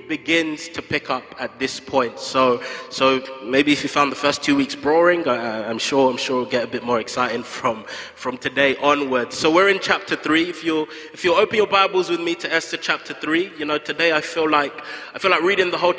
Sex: male